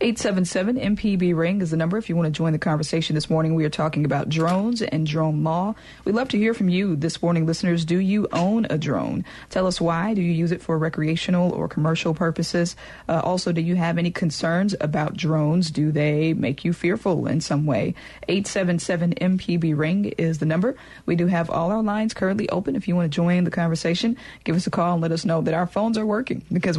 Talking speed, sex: 215 wpm, female